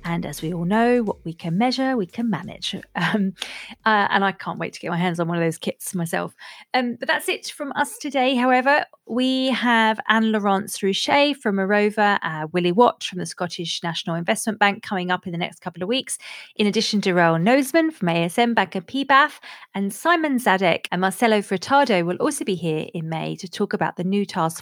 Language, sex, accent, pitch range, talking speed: English, female, British, 175-235 Hz, 210 wpm